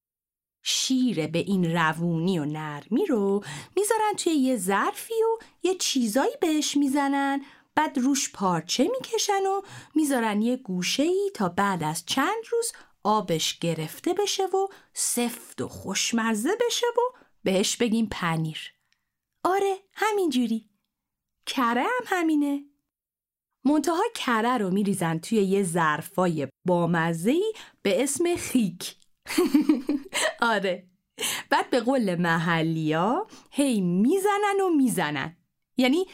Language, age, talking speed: Persian, 30-49, 115 wpm